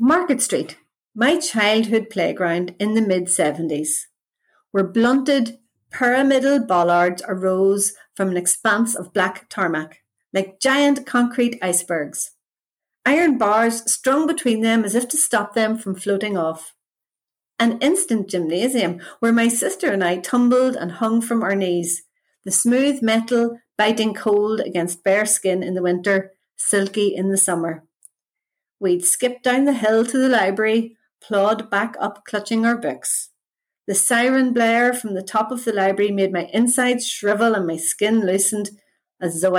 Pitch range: 185-235 Hz